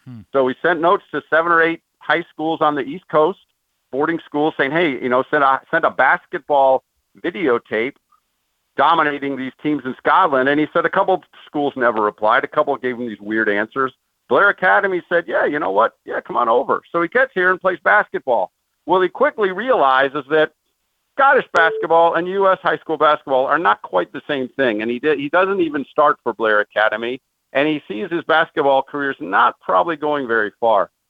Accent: American